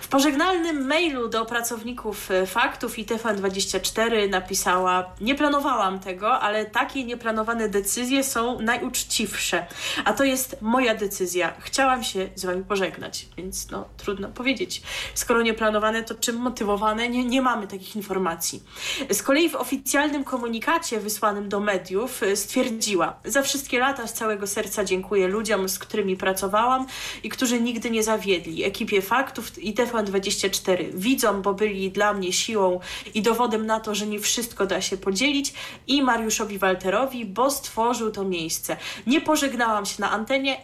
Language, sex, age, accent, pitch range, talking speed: Polish, female, 20-39, native, 195-245 Hz, 150 wpm